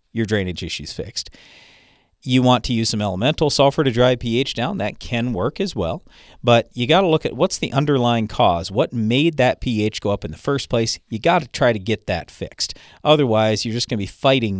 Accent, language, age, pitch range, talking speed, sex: American, English, 40-59, 105-140 Hz, 225 wpm, male